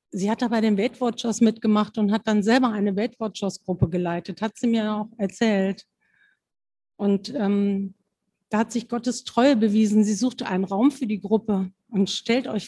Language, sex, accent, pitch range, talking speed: German, female, German, 185-225 Hz, 175 wpm